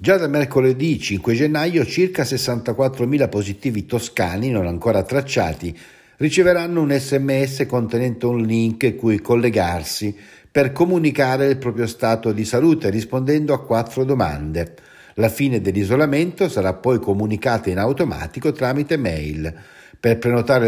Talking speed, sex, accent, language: 125 wpm, male, native, Italian